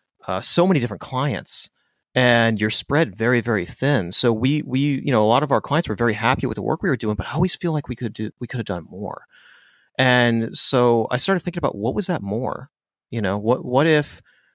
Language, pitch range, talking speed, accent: English, 100-125 Hz, 240 wpm, American